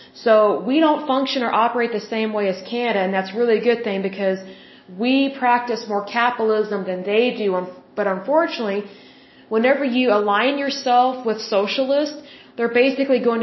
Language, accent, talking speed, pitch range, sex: Bengali, American, 160 wpm, 205-250 Hz, female